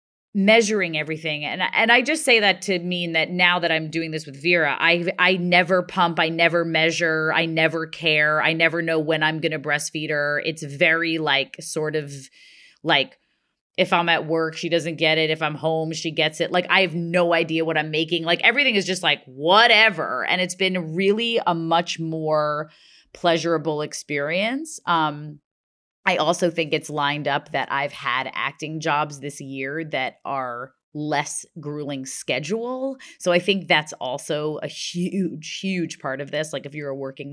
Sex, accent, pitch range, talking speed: female, American, 150-175 Hz, 185 wpm